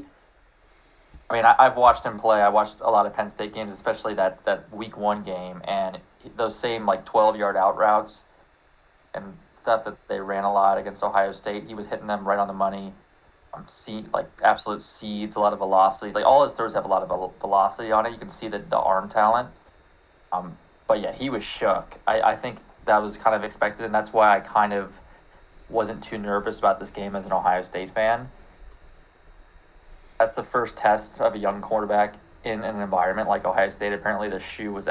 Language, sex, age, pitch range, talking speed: English, male, 20-39, 95-110 Hz, 210 wpm